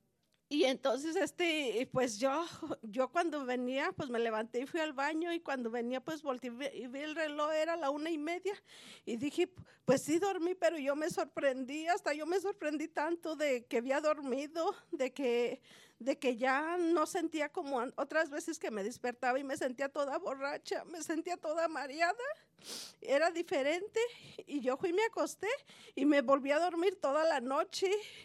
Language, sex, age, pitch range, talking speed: English, female, 50-69, 275-335 Hz, 180 wpm